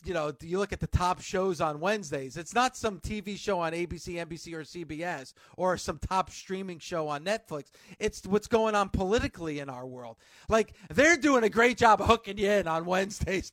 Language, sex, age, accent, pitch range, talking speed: English, male, 40-59, American, 185-225 Hz, 205 wpm